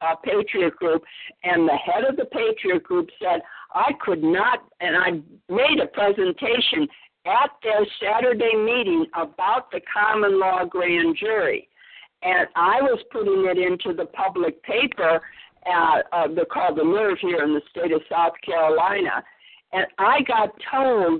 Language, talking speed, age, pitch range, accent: English, 155 wpm, 60-79, 180-285 Hz, American